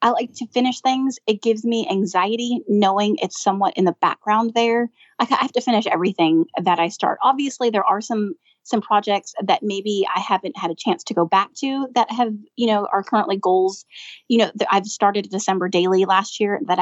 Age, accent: 30-49, American